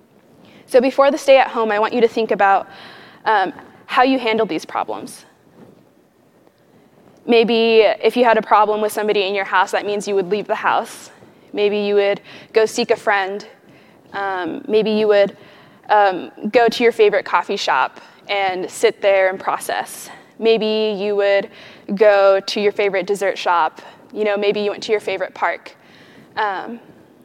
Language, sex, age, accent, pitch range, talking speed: English, female, 20-39, American, 195-225 Hz, 170 wpm